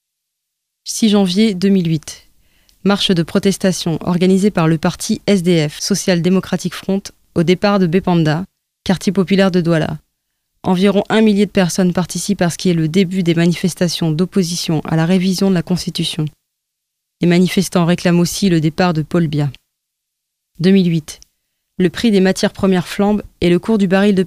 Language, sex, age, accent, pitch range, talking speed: French, female, 20-39, French, 170-195 Hz, 160 wpm